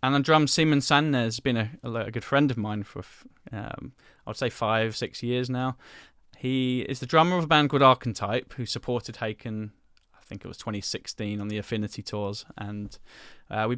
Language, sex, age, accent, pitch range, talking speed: English, male, 10-29, British, 105-125 Hz, 195 wpm